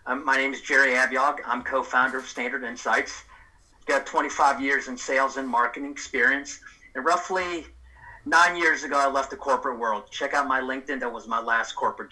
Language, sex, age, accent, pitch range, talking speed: English, male, 50-69, American, 120-140 Hz, 185 wpm